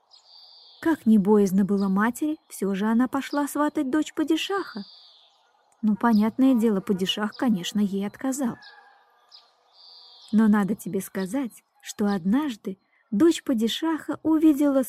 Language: Russian